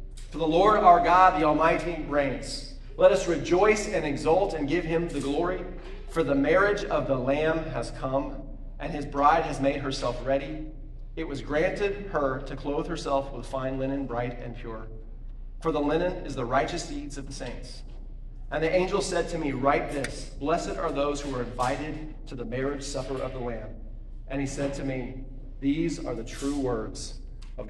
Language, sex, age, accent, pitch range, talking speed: English, male, 40-59, American, 120-145 Hz, 190 wpm